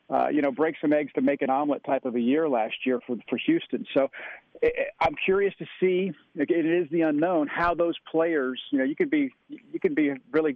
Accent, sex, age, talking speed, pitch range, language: American, male, 50-69, 235 wpm, 130-165 Hz, English